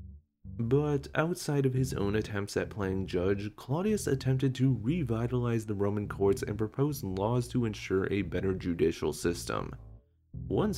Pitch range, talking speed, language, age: 95-130 Hz, 145 wpm, English, 20-39